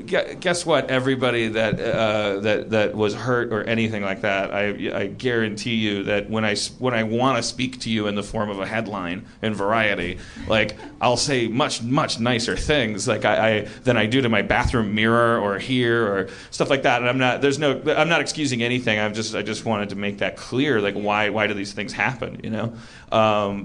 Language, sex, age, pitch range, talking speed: English, male, 30-49, 110-125 Hz, 220 wpm